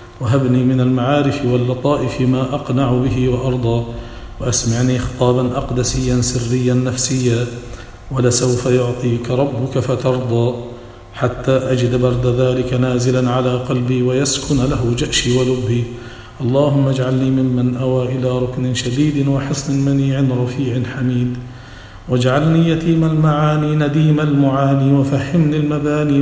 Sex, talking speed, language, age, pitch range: male, 105 wpm, English, 50-69, 125-140 Hz